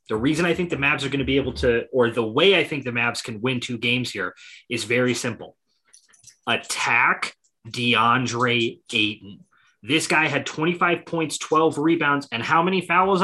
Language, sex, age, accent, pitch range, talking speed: English, male, 30-49, American, 120-160 Hz, 185 wpm